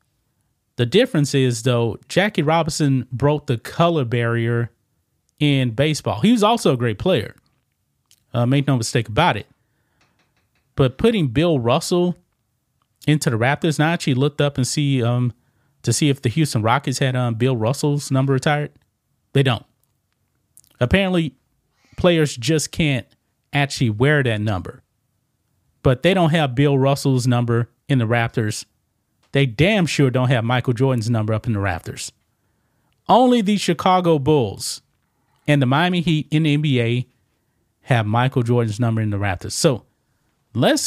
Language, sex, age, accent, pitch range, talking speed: English, male, 30-49, American, 120-150 Hz, 150 wpm